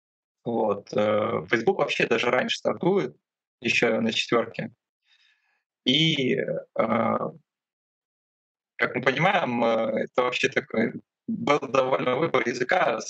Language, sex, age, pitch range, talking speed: Russian, male, 20-39, 115-175 Hz, 90 wpm